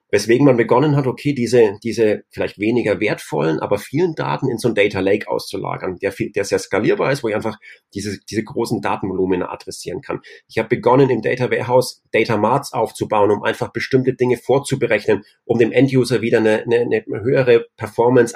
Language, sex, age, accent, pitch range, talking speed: German, male, 30-49, German, 115-145 Hz, 185 wpm